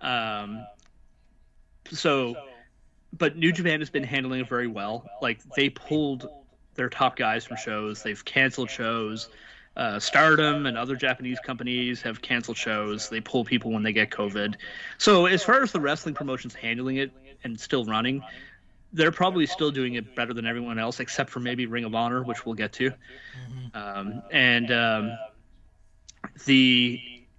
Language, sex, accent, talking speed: English, male, American, 160 wpm